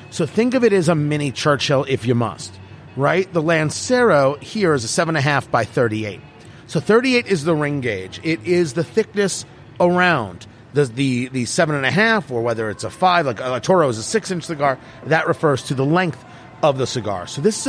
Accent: American